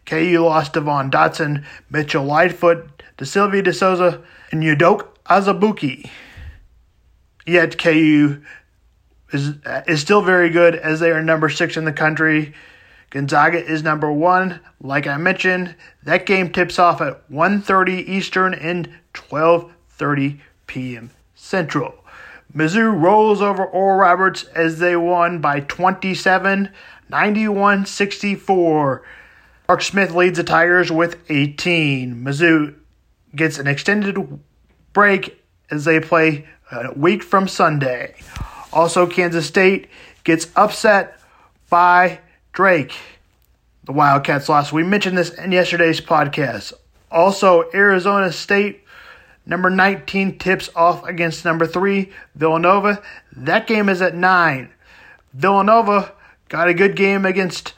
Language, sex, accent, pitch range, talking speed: English, male, American, 155-190 Hz, 120 wpm